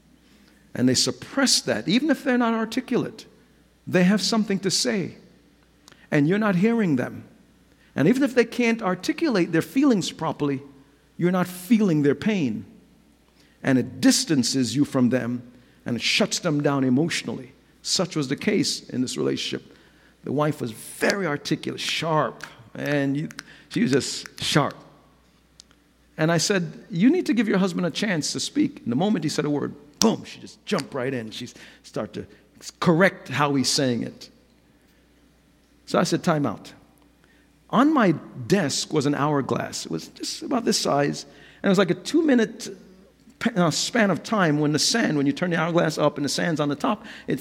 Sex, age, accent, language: male, 50-69, American, English